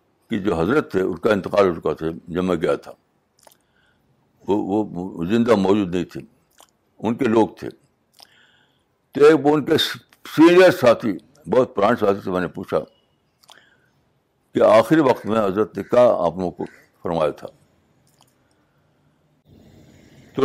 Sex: male